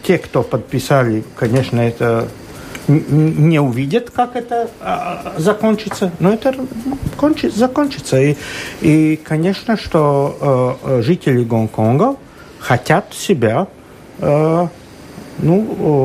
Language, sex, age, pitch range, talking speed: Russian, male, 50-69, 140-200 Hz, 90 wpm